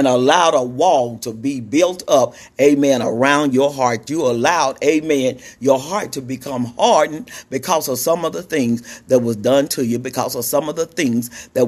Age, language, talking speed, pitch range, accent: 50-69, English, 195 wpm, 120-140 Hz, American